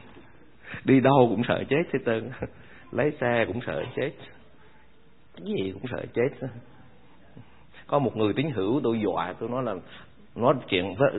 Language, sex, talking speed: Vietnamese, male, 155 wpm